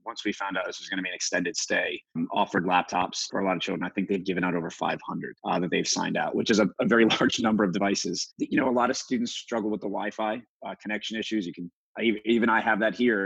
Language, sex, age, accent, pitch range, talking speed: English, male, 30-49, American, 95-110 Hz, 270 wpm